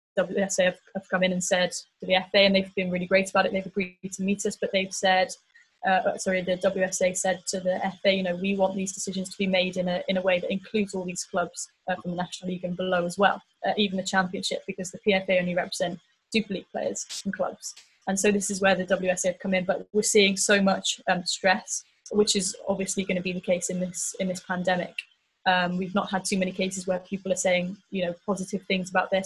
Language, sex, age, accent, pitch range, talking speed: English, female, 20-39, British, 180-195 Hz, 250 wpm